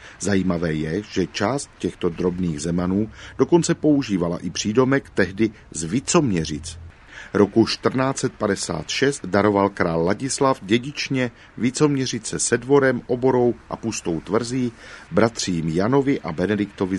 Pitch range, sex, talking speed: 90-120 Hz, male, 110 wpm